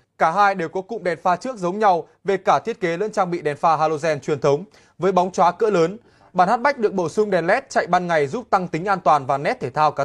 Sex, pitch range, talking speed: male, 165-220 Hz, 285 wpm